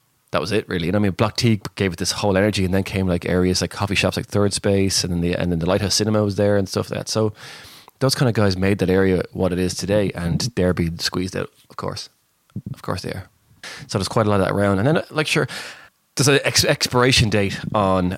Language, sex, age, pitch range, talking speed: English, male, 20-39, 90-105 Hz, 265 wpm